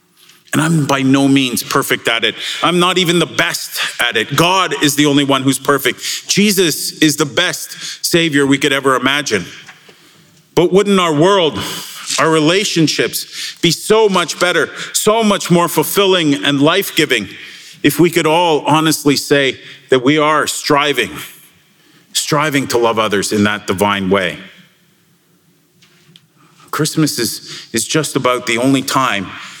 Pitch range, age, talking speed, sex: 135-170 Hz, 40-59, 150 wpm, male